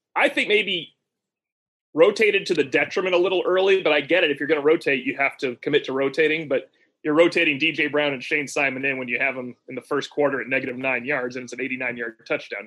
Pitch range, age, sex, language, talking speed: 135-195 Hz, 30-49, male, English, 245 wpm